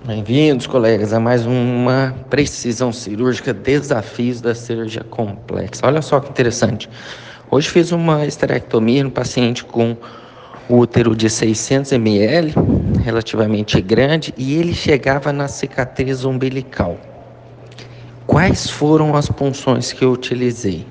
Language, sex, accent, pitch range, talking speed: Portuguese, male, Brazilian, 115-150 Hz, 120 wpm